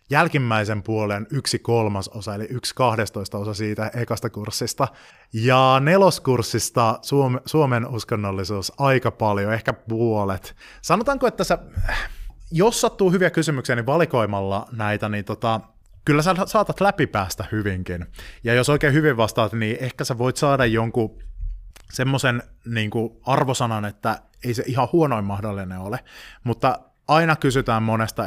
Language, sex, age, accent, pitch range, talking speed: Finnish, male, 20-39, native, 105-135 Hz, 130 wpm